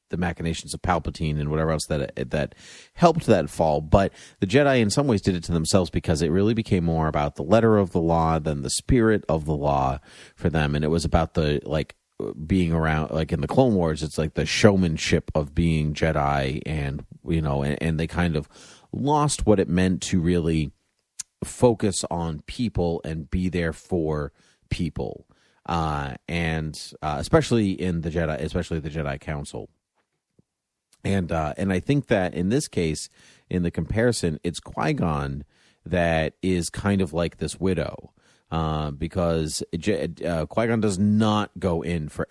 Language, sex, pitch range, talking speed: English, male, 75-95 Hz, 180 wpm